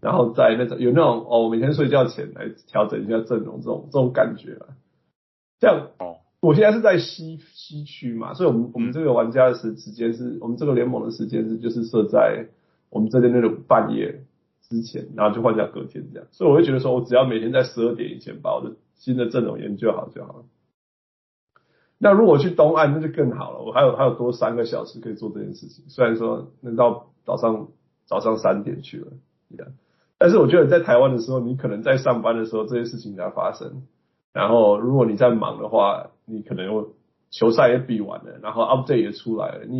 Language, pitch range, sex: Chinese, 115-130 Hz, male